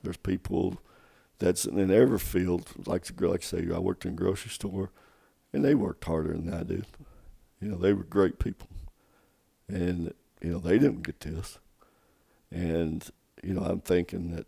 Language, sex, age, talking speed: English, male, 60-79, 175 wpm